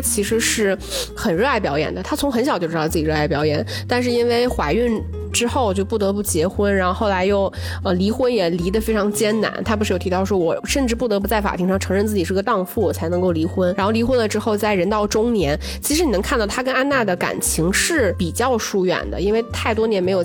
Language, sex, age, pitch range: Chinese, female, 20-39, 185-245 Hz